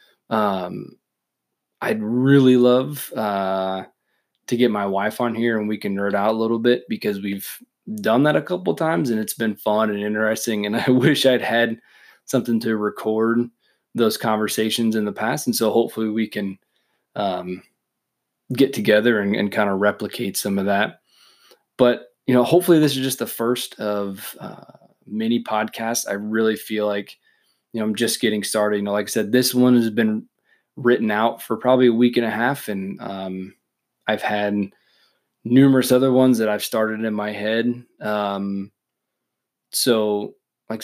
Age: 20-39